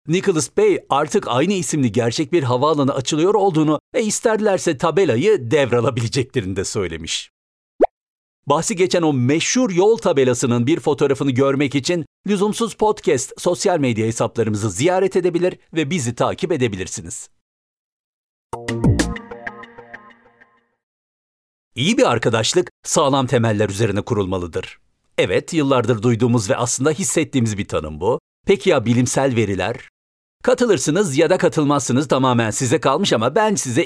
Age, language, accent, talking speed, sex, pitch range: 60-79, Turkish, native, 120 wpm, male, 120-180 Hz